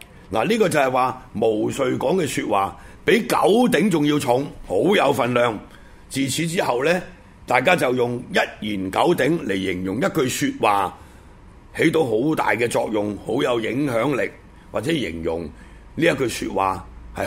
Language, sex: Chinese, male